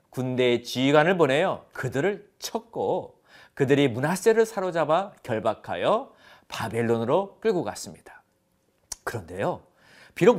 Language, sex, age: Korean, male, 40-59